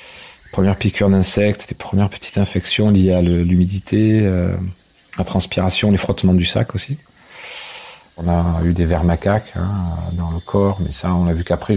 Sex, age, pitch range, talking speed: male, 40-59, 90-105 Hz, 190 wpm